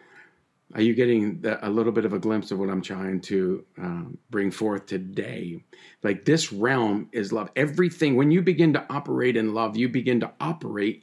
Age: 50-69